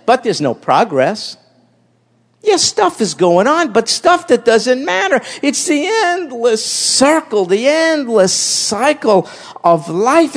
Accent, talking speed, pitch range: American, 135 wpm, 175-260 Hz